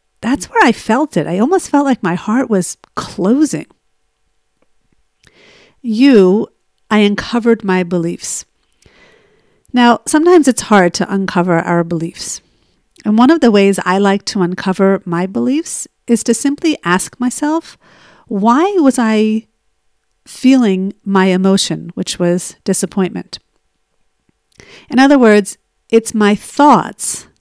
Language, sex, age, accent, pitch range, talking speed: English, female, 50-69, American, 185-235 Hz, 125 wpm